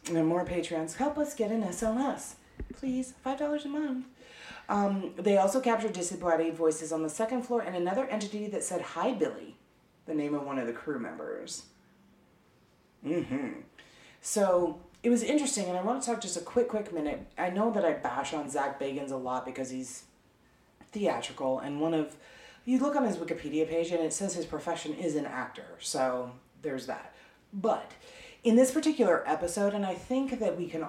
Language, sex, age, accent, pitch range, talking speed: English, female, 30-49, American, 150-220 Hz, 185 wpm